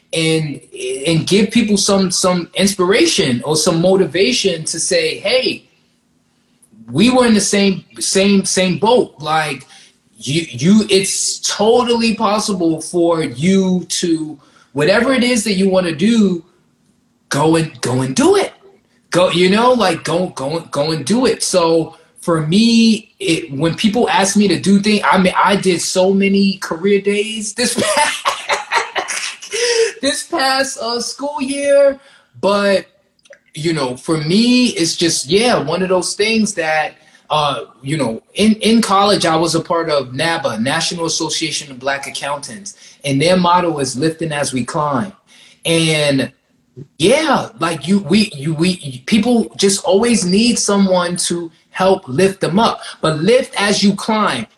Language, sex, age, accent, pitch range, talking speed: English, male, 20-39, American, 165-215 Hz, 155 wpm